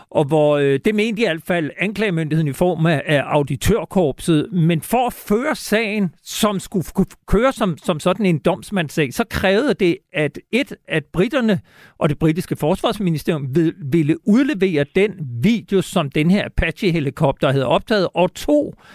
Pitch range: 155-205 Hz